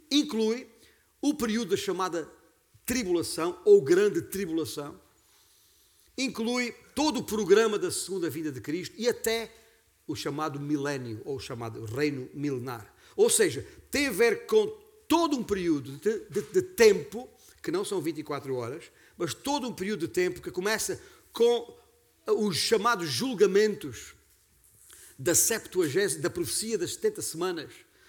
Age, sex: 50-69, male